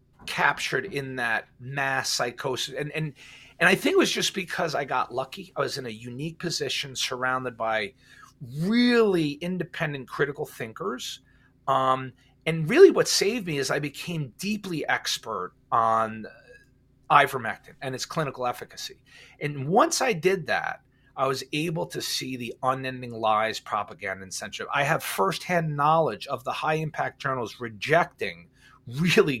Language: English